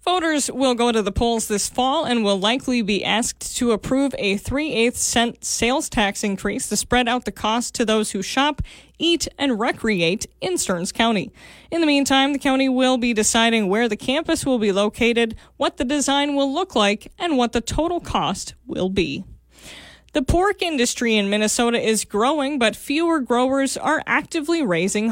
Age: 20-39